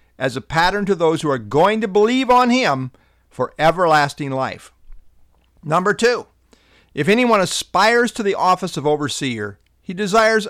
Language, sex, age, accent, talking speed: English, male, 50-69, American, 155 wpm